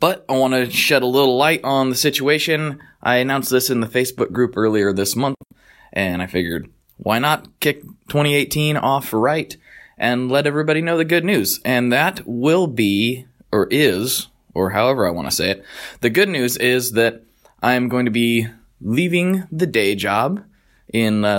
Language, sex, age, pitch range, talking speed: English, male, 20-39, 110-140 Hz, 185 wpm